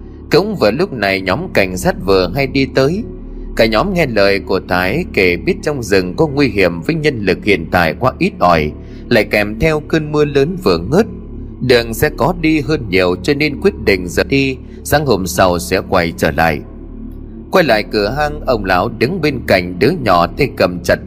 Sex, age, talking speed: male, 30-49, 210 wpm